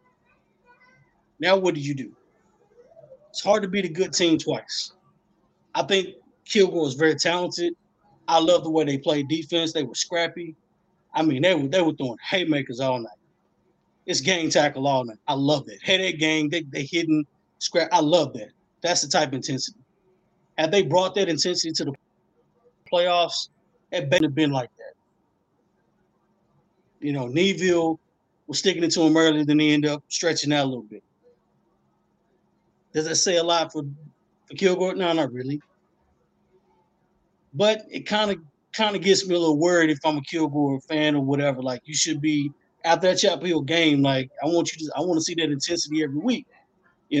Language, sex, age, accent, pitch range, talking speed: English, male, 30-49, American, 145-185 Hz, 185 wpm